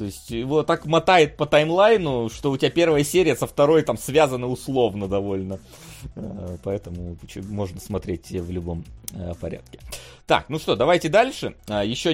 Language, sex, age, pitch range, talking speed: Russian, male, 30-49, 110-165 Hz, 150 wpm